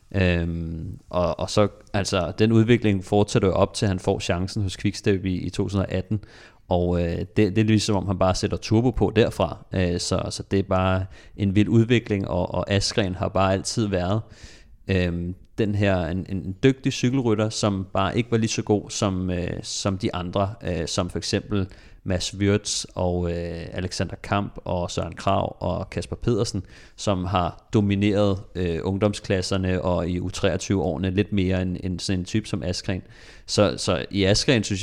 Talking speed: 185 wpm